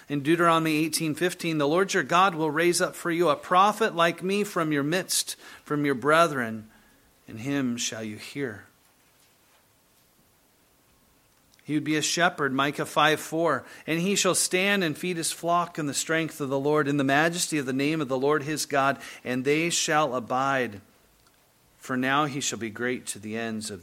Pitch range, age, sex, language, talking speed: 135-195 Hz, 40-59, male, English, 185 wpm